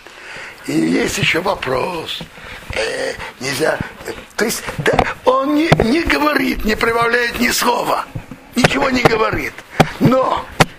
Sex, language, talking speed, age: male, Russian, 120 wpm, 60-79